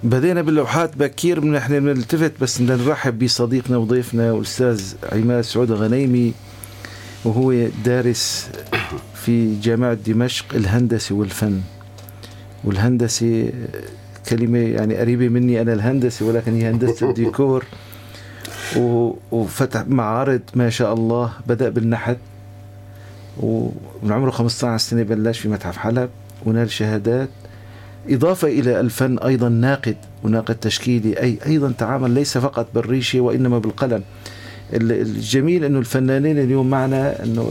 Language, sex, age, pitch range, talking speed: Arabic, male, 50-69, 110-130 Hz, 115 wpm